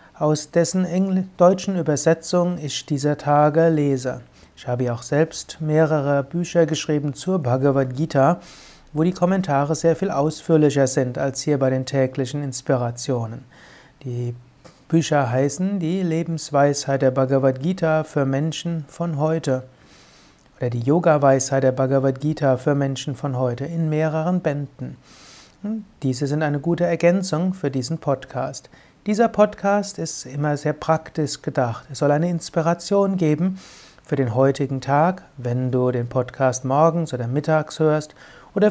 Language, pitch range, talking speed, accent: German, 135-170 Hz, 140 wpm, German